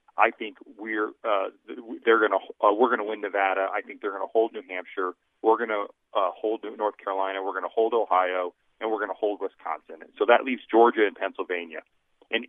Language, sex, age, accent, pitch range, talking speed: English, male, 40-59, American, 95-125 Hz, 190 wpm